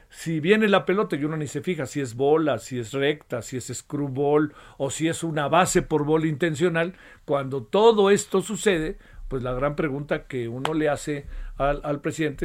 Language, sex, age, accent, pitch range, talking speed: Spanish, male, 50-69, Mexican, 145-200 Hz, 200 wpm